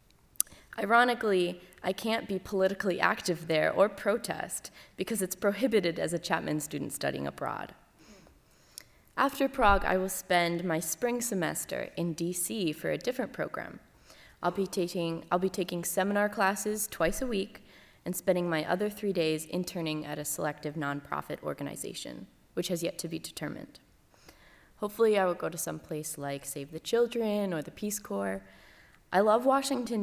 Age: 20-39